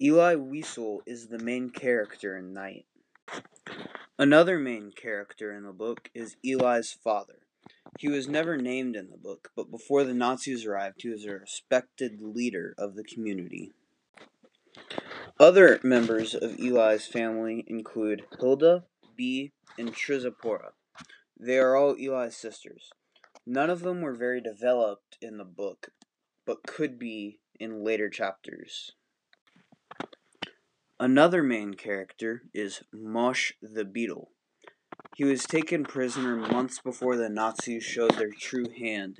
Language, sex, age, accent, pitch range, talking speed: English, male, 20-39, American, 110-130 Hz, 130 wpm